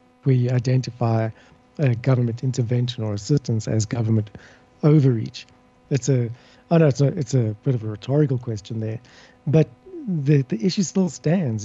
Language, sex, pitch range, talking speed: English, male, 120-145 Hz, 160 wpm